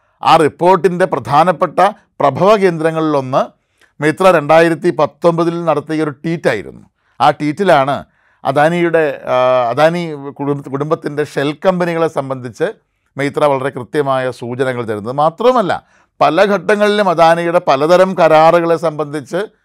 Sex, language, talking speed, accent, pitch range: male, Malayalam, 90 wpm, native, 150-180 Hz